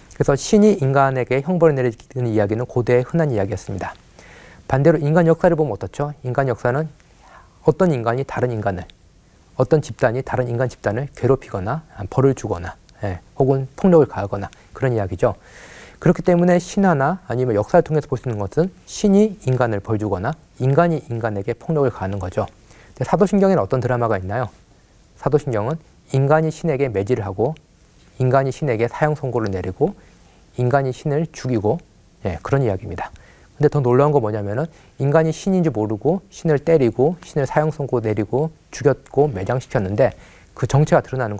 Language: Korean